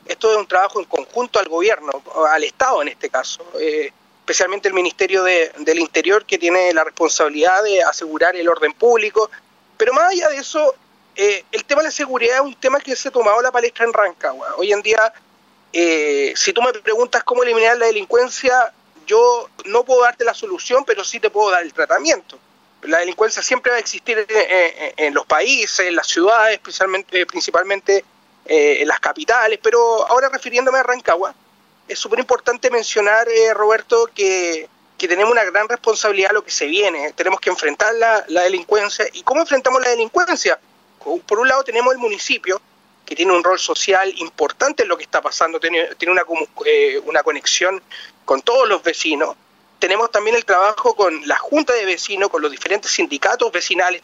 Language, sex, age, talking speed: Spanish, male, 30-49, 190 wpm